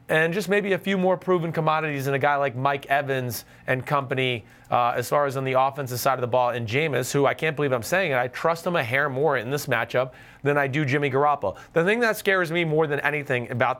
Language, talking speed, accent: English, 255 wpm, American